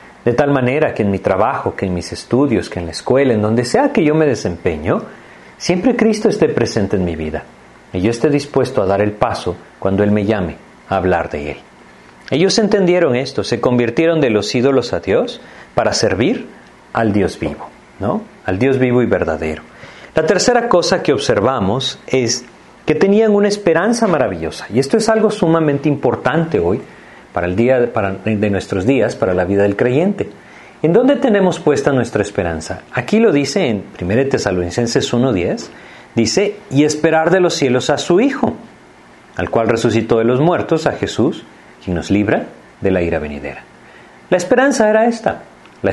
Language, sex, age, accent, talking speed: Spanish, male, 40-59, Mexican, 180 wpm